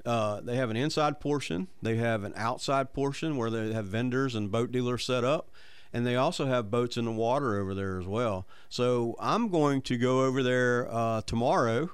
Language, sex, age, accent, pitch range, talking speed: English, male, 40-59, American, 115-135 Hz, 205 wpm